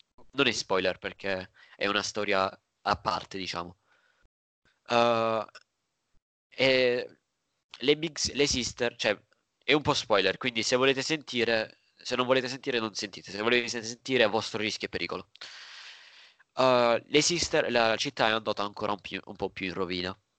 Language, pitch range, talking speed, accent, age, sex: Italian, 100-125 Hz, 160 wpm, native, 20-39, male